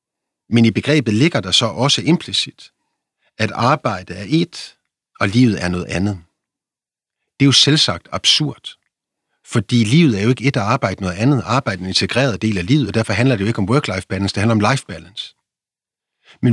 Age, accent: 50-69, native